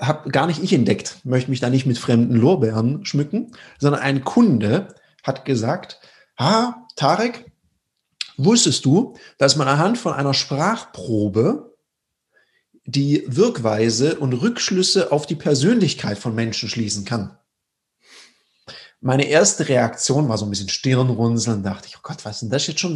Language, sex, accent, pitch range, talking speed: German, male, German, 120-175 Hz, 150 wpm